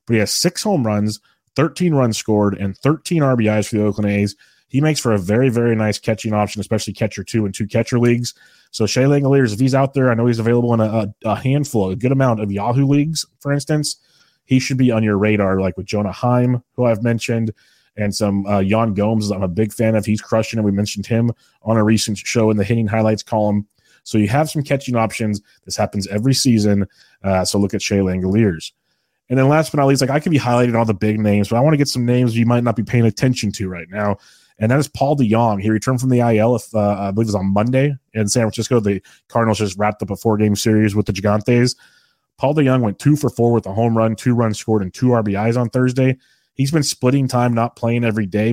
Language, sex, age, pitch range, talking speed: English, male, 30-49, 105-125 Hz, 245 wpm